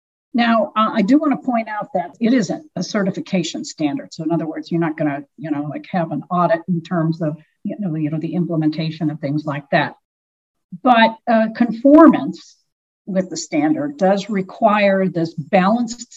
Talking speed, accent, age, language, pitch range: 185 wpm, American, 50-69, English, 170-245 Hz